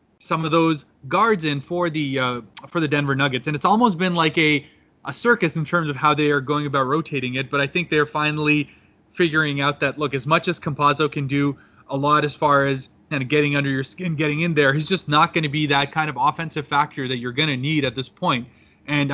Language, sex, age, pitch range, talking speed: English, male, 30-49, 140-160 Hz, 250 wpm